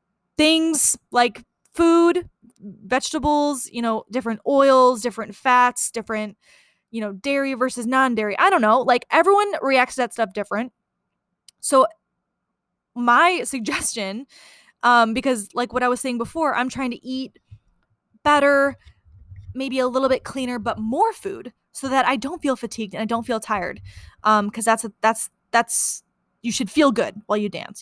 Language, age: English, 10-29